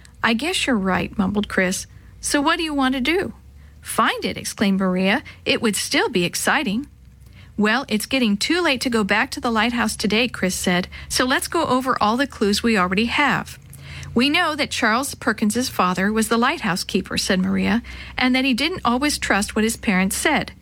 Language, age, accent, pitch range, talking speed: English, 50-69, American, 195-255 Hz, 200 wpm